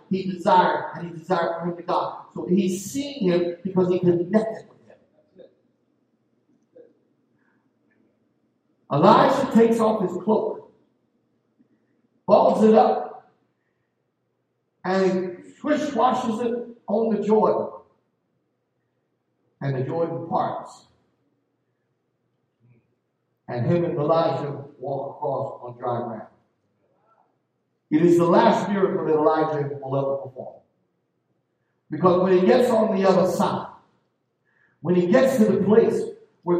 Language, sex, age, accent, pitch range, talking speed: English, male, 50-69, American, 175-220 Hz, 115 wpm